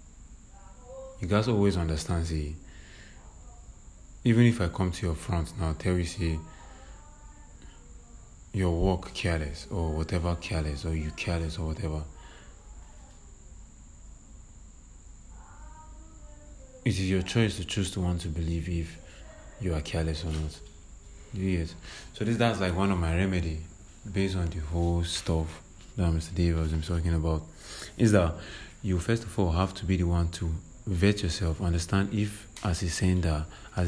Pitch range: 80-100 Hz